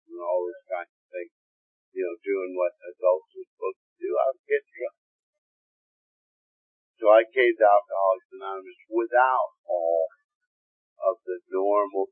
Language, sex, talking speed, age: English, male, 150 wpm, 50-69